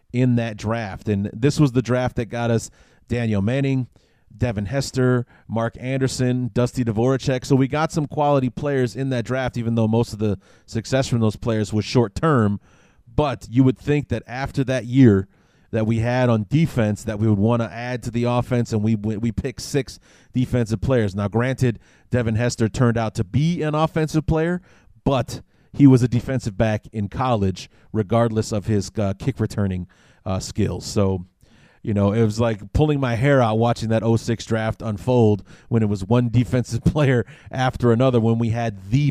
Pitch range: 110-130 Hz